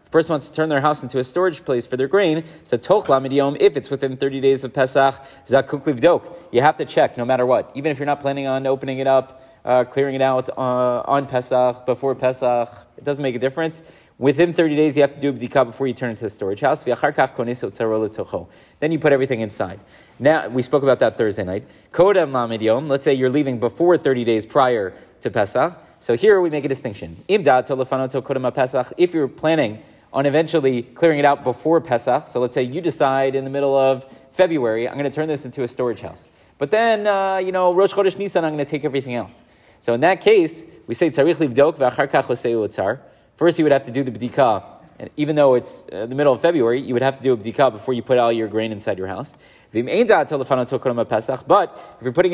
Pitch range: 125-160 Hz